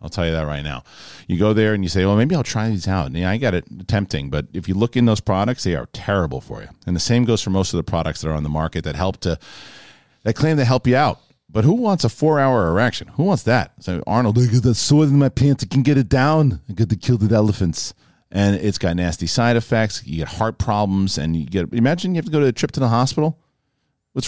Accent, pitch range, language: American, 90-125 Hz, English